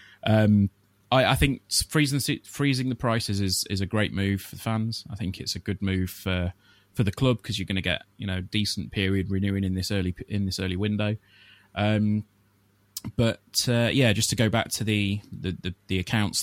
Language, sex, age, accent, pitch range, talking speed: English, male, 20-39, British, 95-110 Hz, 210 wpm